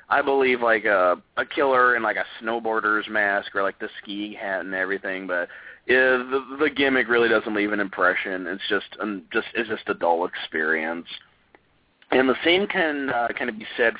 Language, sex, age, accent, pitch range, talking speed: English, male, 30-49, American, 95-125 Hz, 195 wpm